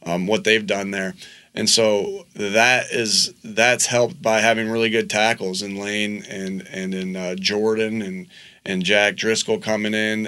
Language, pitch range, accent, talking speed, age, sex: English, 105-120 Hz, American, 170 wpm, 30-49, male